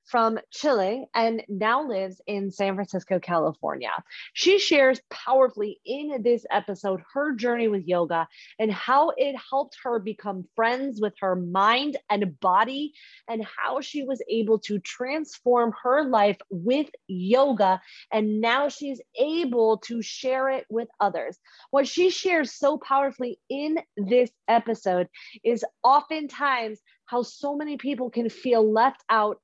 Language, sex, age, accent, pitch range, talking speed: English, female, 30-49, American, 205-275 Hz, 140 wpm